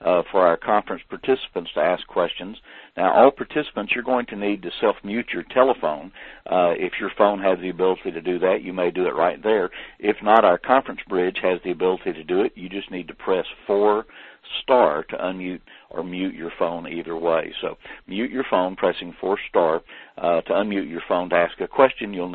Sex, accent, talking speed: male, American, 210 wpm